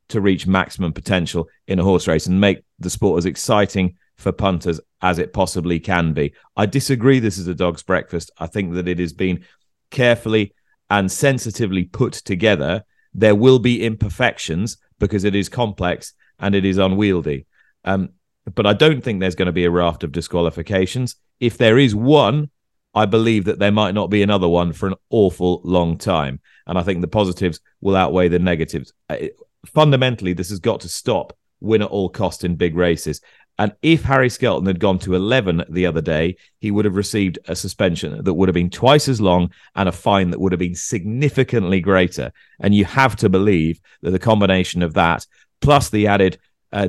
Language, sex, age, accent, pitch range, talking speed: English, male, 30-49, British, 85-105 Hz, 195 wpm